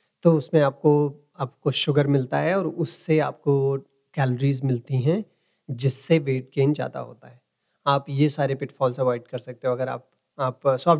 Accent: native